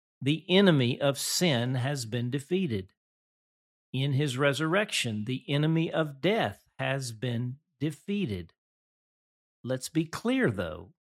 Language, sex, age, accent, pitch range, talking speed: English, male, 50-69, American, 115-160 Hz, 115 wpm